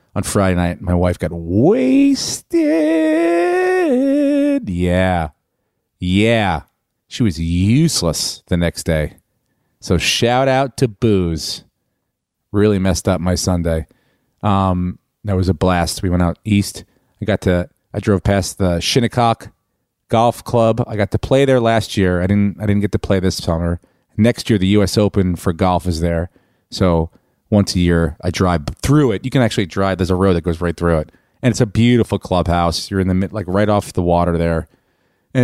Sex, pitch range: male, 90-125 Hz